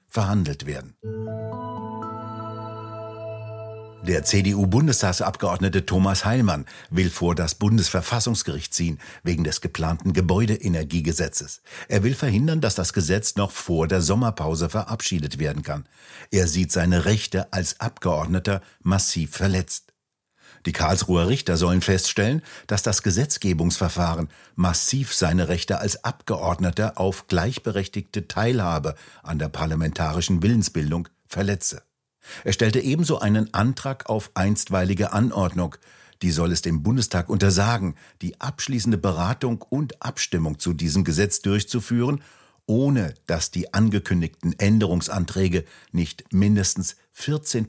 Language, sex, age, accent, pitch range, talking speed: German, male, 60-79, German, 85-110 Hz, 110 wpm